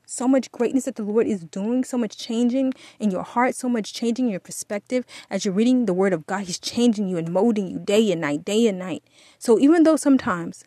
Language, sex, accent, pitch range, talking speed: English, female, American, 190-245 Hz, 235 wpm